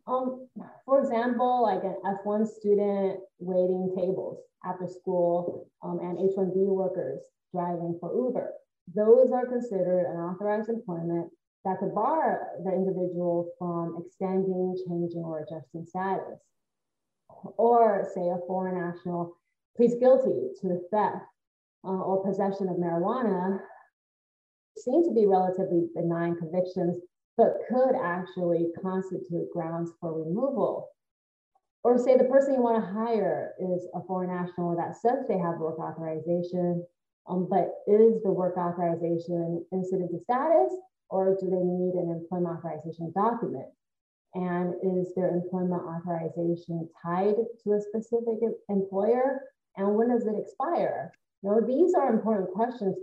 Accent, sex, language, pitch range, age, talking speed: American, female, English, 175-220 Hz, 30-49, 135 wpm